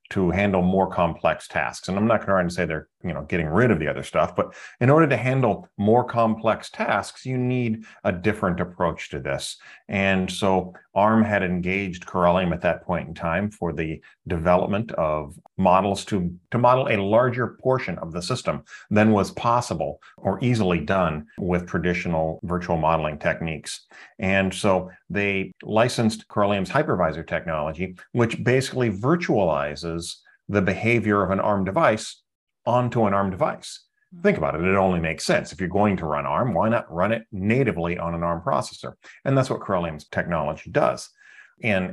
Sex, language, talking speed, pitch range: male, English, 170 wpm, 85-110 Hz